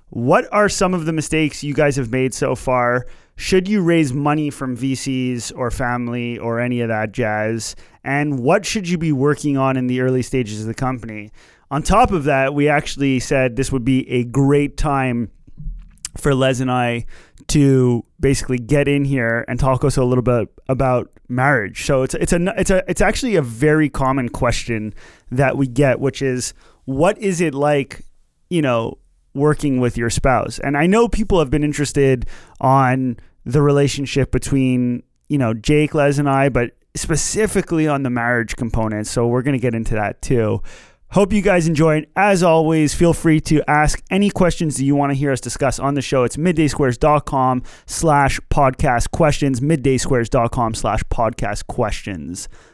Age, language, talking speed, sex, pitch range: 30-49, English, 180 wpm, male, 125-150 Hz